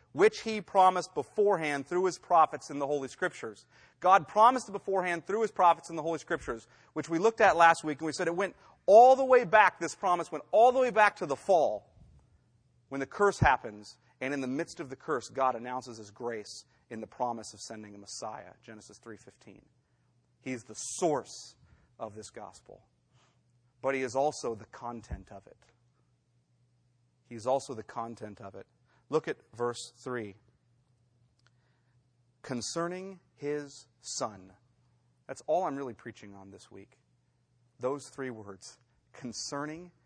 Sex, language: male, English